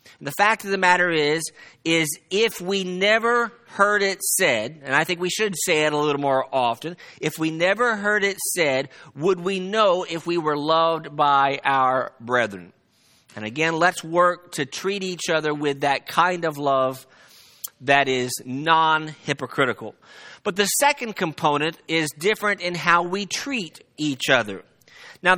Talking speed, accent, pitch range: 165 wpm, American, 145-190 Hz